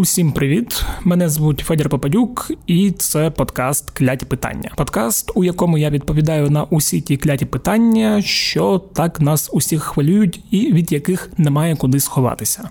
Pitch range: 145-175 Hz